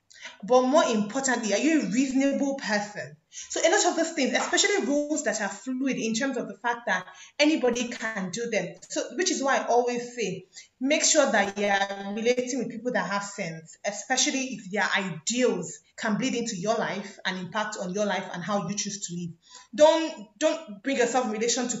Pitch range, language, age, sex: 200-265 Hz, English, 20-39, female